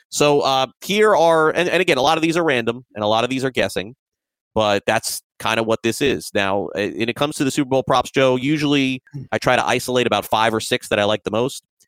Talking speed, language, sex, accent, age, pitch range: 260 wpm, English, male, American, 30-49, 105-135 Hz